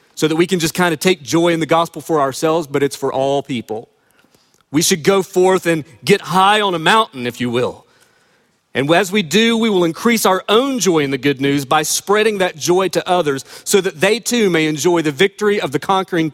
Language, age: English, 40-59